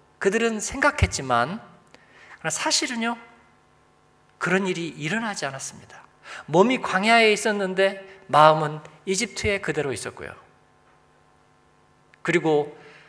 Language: Korean